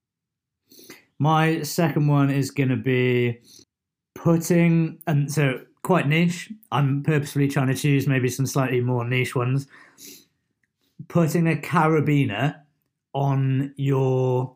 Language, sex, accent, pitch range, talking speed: English, male, British, 120-145 Hz, 115 wpm